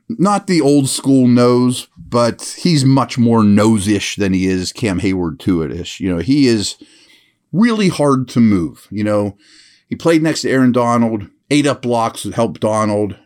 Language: English